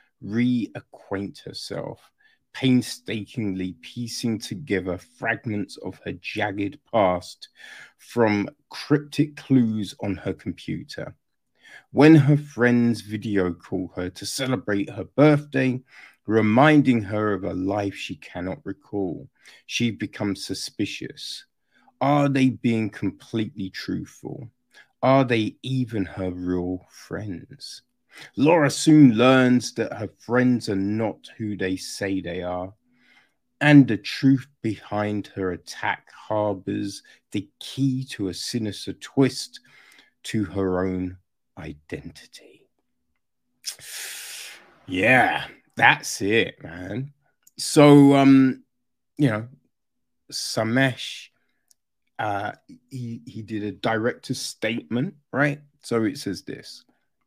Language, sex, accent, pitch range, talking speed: English, male, British, 100-130 Hz, 105 wpm